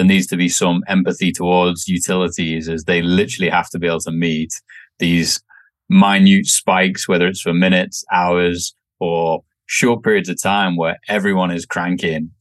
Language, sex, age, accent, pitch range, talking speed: English, male, 20-39, British, 90-115 Hz, 165 wpm